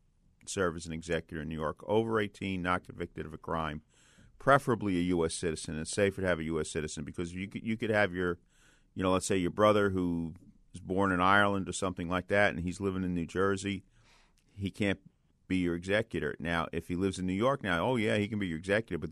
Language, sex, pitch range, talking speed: English, male, 85-110 Hz, 230 wpm